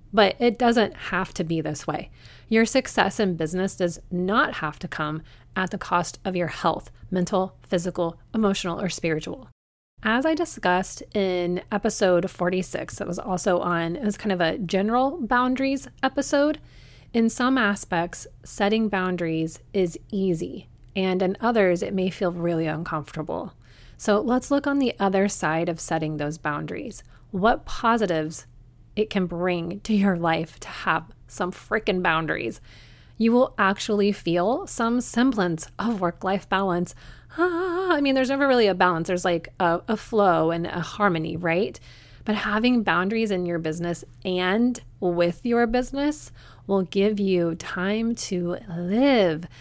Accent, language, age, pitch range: American, English, 30-49, 170-225 Hz